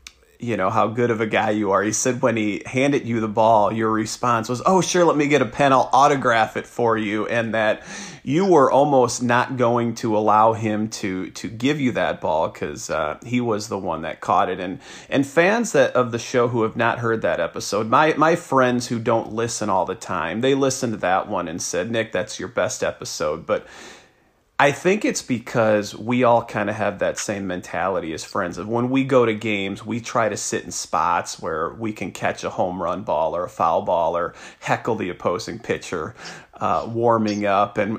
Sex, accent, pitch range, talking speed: male, American, 105-125 Hz, 220 wpm